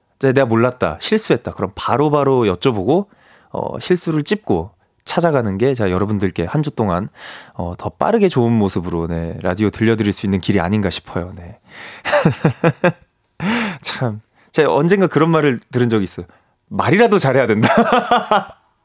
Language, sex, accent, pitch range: Korean, male, native, 95-150 Hz